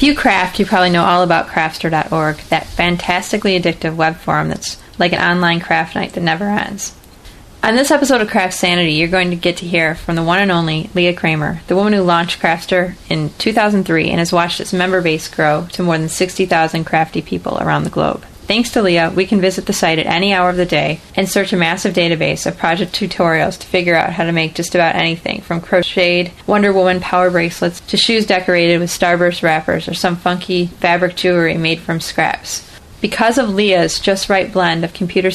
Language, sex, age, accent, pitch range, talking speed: English, female, 30-49, American, 170-195 Hz, 210 wpm